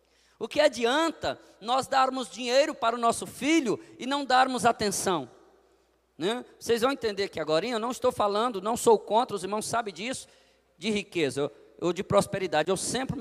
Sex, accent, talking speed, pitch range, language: male, Brazilian, 175 wpm, 225-275 Hz, Portuguese